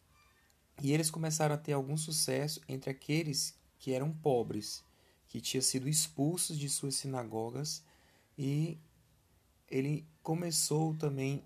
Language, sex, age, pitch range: Portuguese, male, 30-49, 115-145 Hz